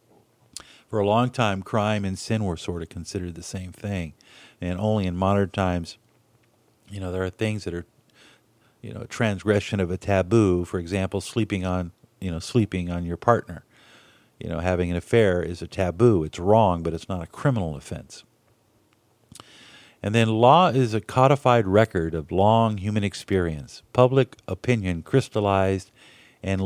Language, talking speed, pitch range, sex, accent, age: English, 165 wpm, 95-115 Hz, male, American, 50-69